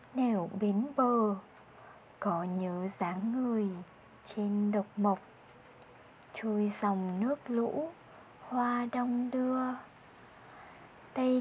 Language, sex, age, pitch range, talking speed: Vietnamese, female, 20-39, 200-250 Hz, 95 wpm